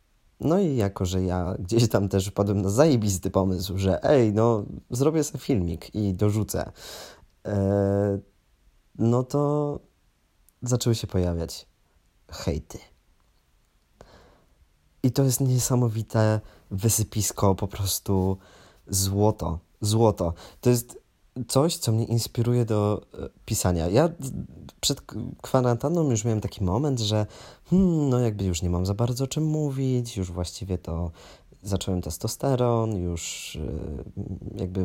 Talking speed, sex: 115 wpm, male